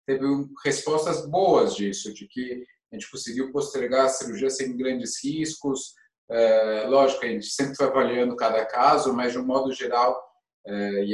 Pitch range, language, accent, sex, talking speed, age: 115-155 Hz, Portuguese, Brazilian, male, 155 wpm, 20-39